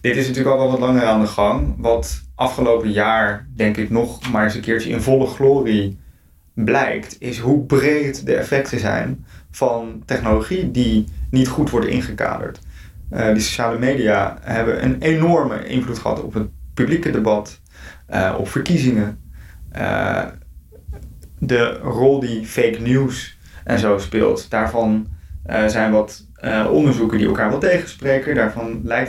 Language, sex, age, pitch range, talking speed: Dutch, male, 20-39, 105-130 Hz, 155 wpm